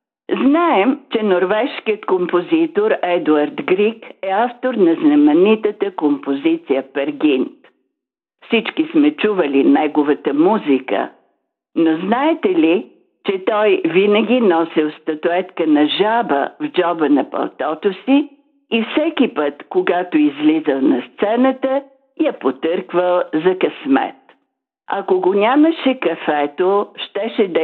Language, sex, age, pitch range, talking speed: Bulgarian, female, 60-79, 165-275 Hz, 105 wpm